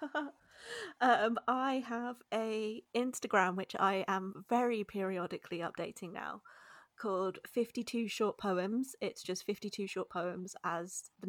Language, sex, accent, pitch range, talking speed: English, female, British, 195-240 Hz, 120 wpm